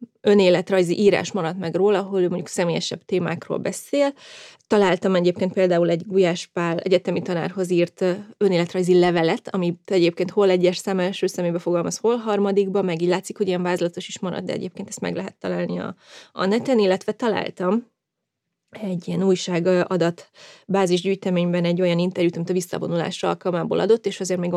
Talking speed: 160 wpm